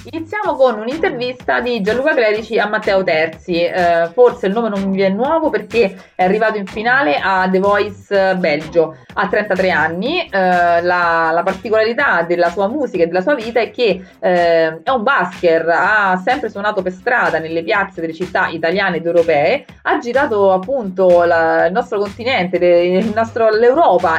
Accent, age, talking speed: native, 30-49, 160 wpm